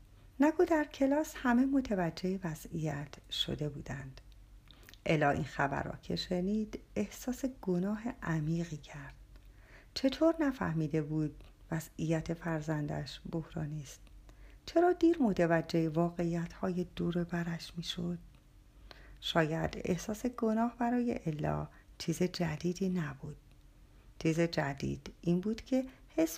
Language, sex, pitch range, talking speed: Persian, female, 160-235 Hz, 105 wpm